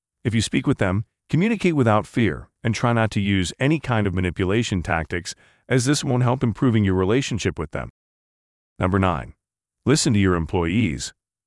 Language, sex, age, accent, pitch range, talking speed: English, male, 40-59, American, 90-125 Hz, 175 wpm